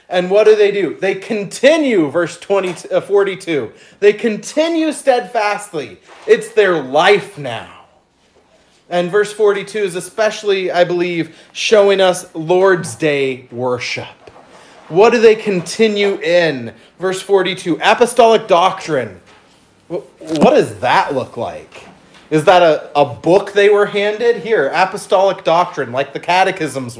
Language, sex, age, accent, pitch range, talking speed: English, male, 30-49, American, 165-215 Hz, 125 wpm